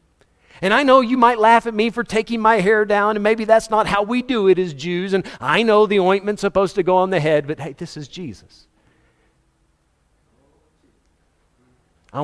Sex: male